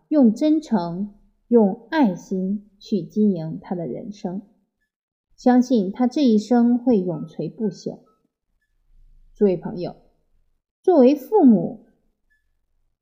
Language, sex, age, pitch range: Chinese, female, 20-39, 190-245 Hz